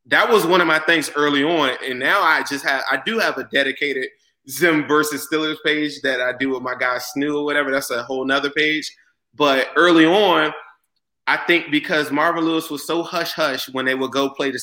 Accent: American